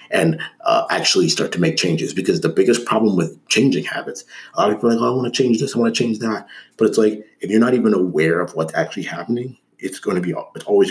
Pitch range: 80-115 Hz